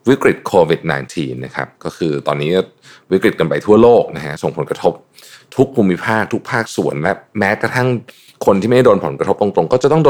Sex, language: male, Thai